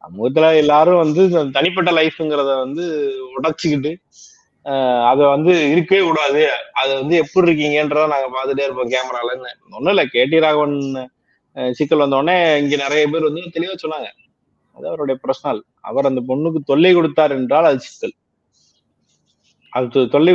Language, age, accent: Tamil, 30-49, native